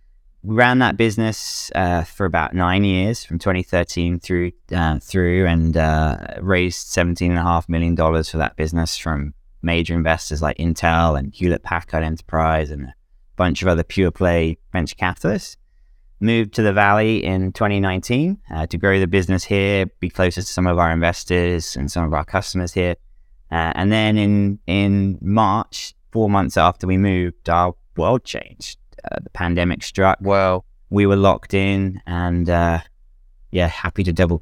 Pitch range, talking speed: 80-95 Hz, 160 wpm